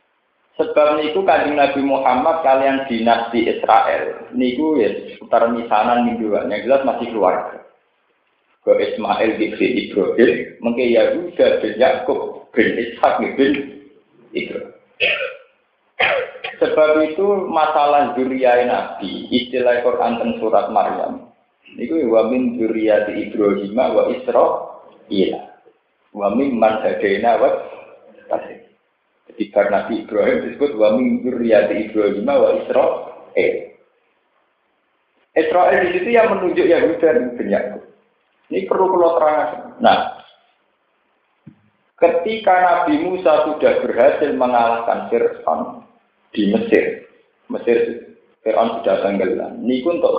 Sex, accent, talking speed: male, native, 110 wpm